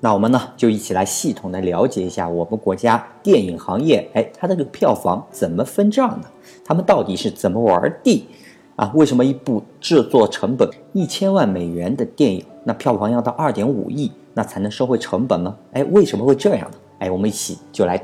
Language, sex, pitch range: Chinese, male, 95-150 Hz